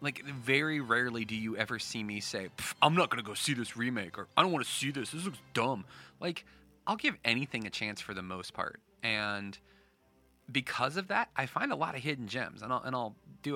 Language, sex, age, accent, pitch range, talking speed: English, male, 30-49, American, 100-130 Hz, 230 wpm